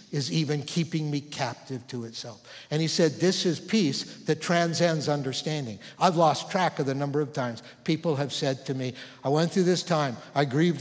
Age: 60-79